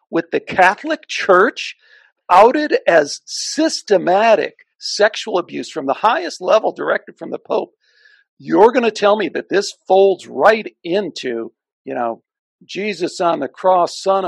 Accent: American